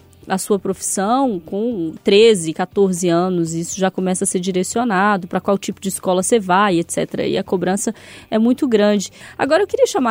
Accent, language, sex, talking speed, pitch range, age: Brazilian, Portuguese, female, 185 wpm, 195-275 Hz, 20-39